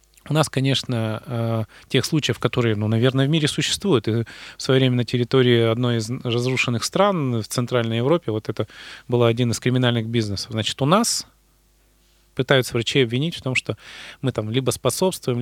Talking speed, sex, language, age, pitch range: 170 wpm, male, Russian, 30-49, 115-140 Hz